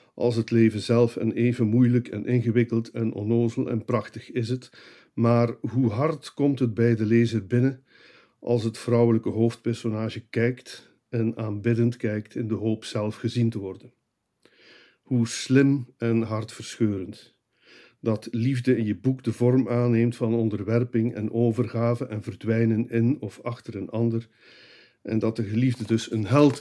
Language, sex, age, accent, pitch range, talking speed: Dutch, male, 50-69, Dutch, 110-125 Hz, 155 wpm